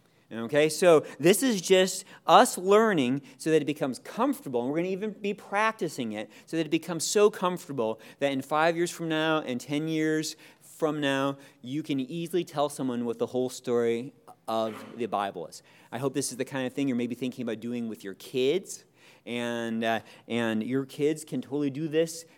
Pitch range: 135-195 Hz